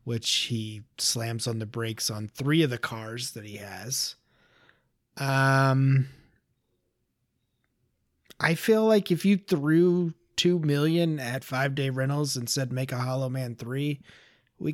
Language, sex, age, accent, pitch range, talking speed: English, male, 30-49, American, 115-140 Hz, 145 wpm